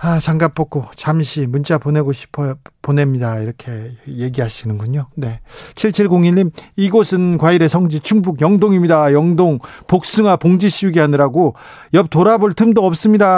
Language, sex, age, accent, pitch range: Korean, male, 40-59, native, 140-180 Hz